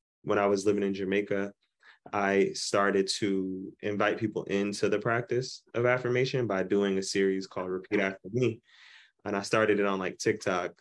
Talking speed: 170 wpm